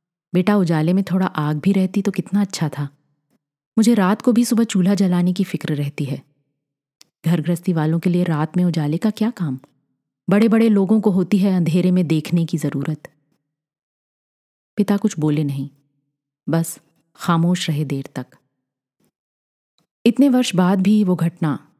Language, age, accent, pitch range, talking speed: Hindi, 30-49, native, 150-185 Hz, 160 wpm